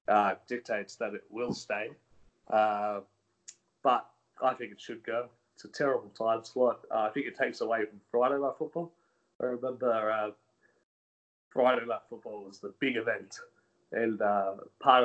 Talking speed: 160 wpm